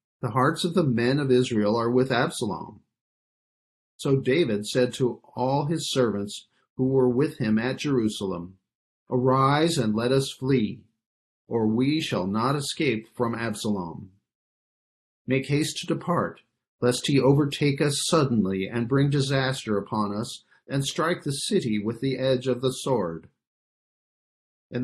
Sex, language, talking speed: male, English, 145 wpm